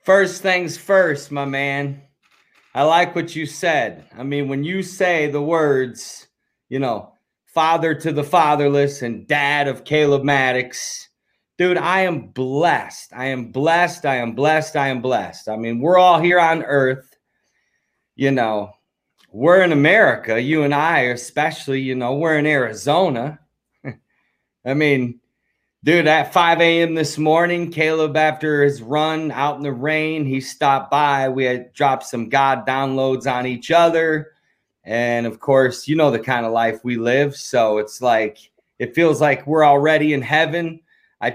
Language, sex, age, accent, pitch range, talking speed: English, male, 30-49, American, 130-155 Hz, 165 wpm